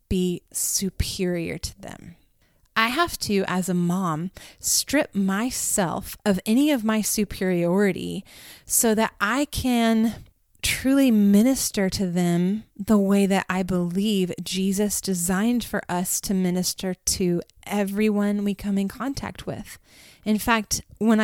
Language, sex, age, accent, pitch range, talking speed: English, female, 20-39, American, 185-230 Hz, 130 wpm